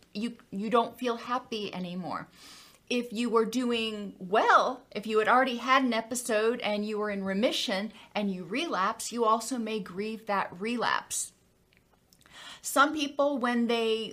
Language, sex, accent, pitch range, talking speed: English, female, American, 210-260 Hz, 155 wpm